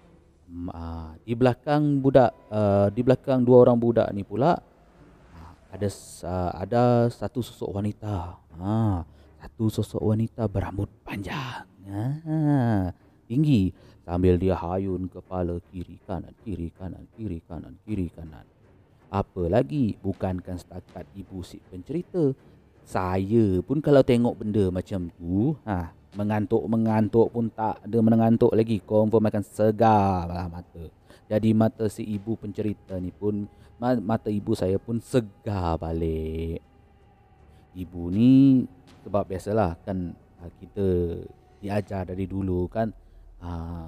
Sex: male